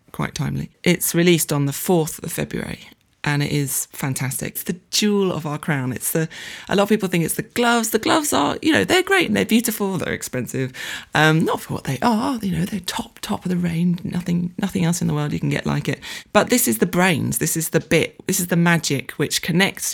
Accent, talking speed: British, 245 wpm